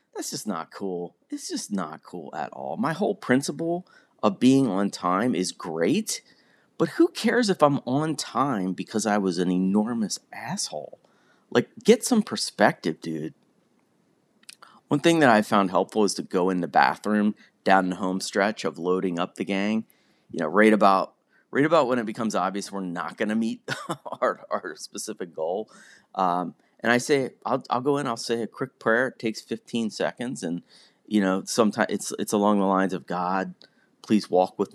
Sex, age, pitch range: male, 30-49, 90-125 Hz